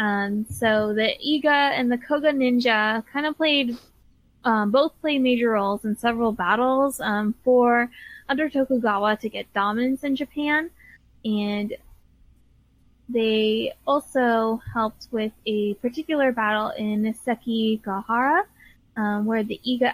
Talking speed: 125 wpm